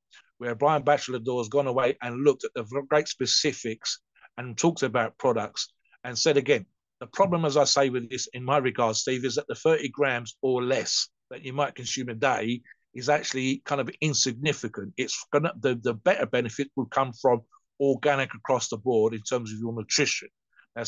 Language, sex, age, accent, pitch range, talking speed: English, male, 50-69, British, 115-140 Hz, 195 wpm